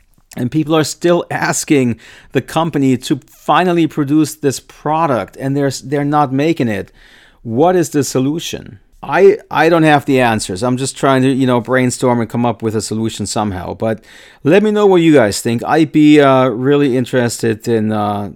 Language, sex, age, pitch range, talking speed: English, male, 40-59, 120-155 Hz, 185 wpm